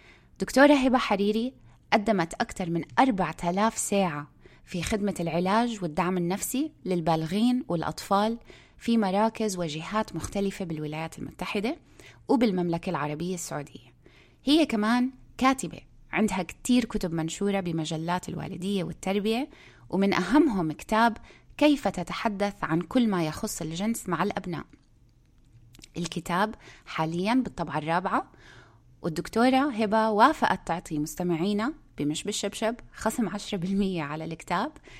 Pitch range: 170-225 Hz